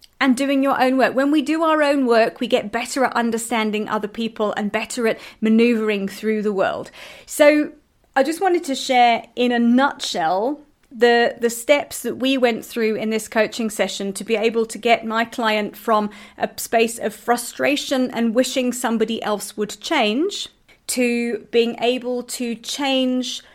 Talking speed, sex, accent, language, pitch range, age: 175 wpm, female, British, English, 205-250 Hz, 30-49